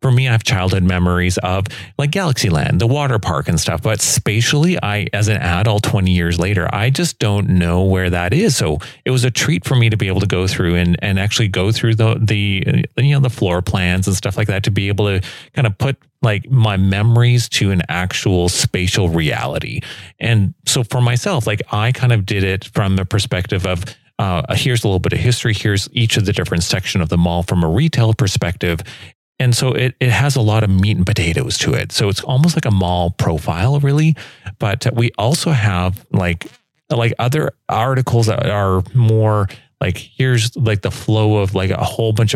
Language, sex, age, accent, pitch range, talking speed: English, male, 30-49, American, 95-125 Hz, 215 wpm